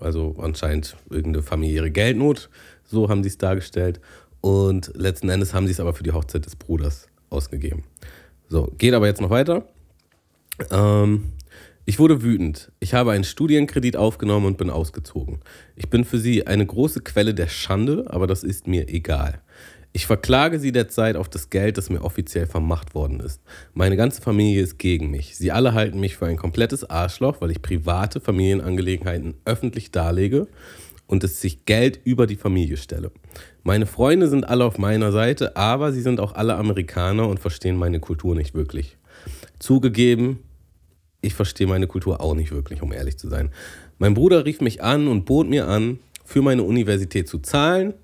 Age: 30-49